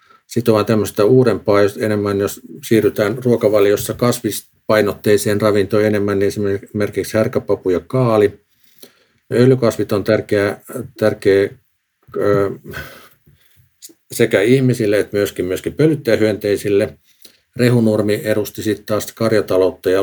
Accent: native